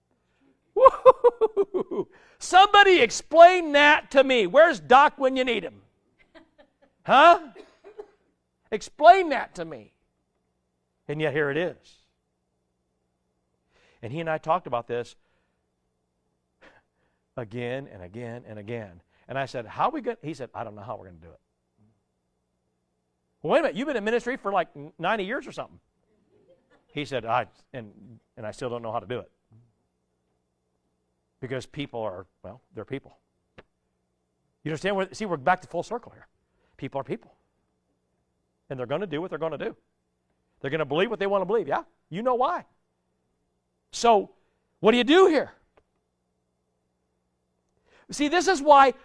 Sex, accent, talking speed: male, American, 160 wpm